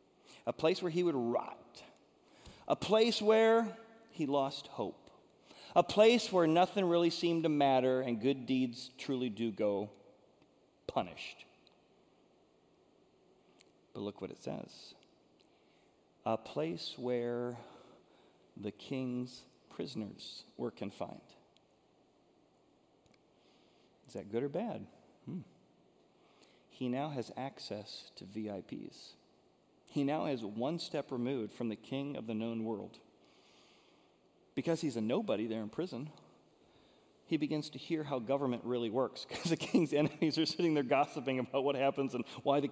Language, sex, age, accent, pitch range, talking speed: English, male, 40-59, American, 120-155 Hz, 130 wpm